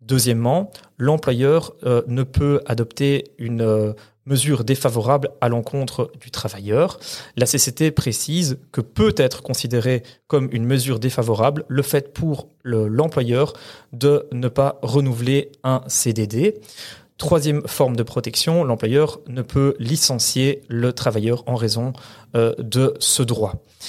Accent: French